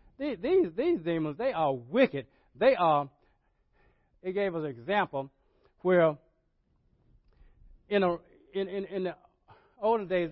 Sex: male